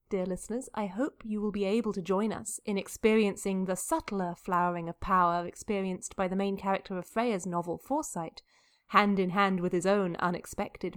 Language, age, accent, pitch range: English, 30-49, British, 185-235 Hz